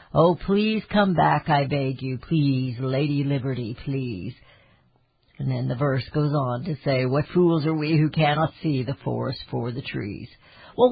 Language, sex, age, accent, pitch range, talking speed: English, female, 50-69, American, 150-215 Hz, 175 wpm